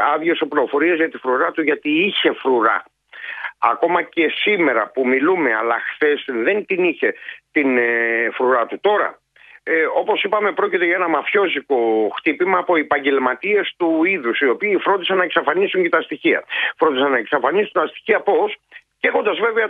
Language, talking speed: Greek, 160 wpm